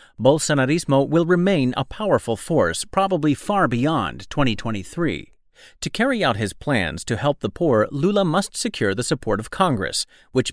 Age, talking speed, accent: 40-59, 155 wpm, American